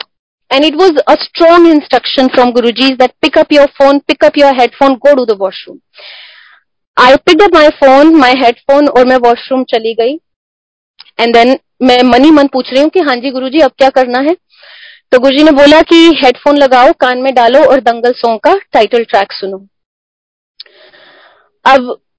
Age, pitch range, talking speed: 30-49, 250-320 Hz, 180 wpm